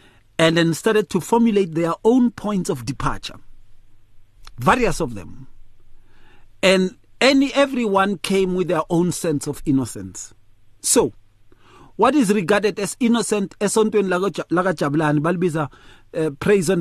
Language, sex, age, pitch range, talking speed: English, male, 40-59, 125-205 Hz, 115 wpm